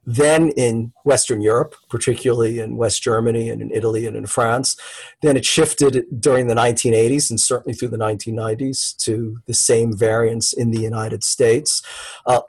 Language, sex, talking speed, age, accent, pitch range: English, male, 165 wpm, 40-59, American, 115-140 Hz